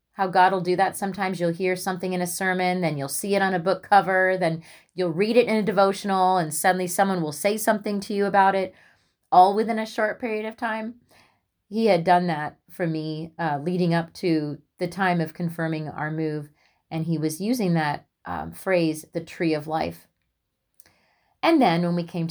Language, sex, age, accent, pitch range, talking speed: English, female, 30-49, American, 150-190 Hz, 200 wpm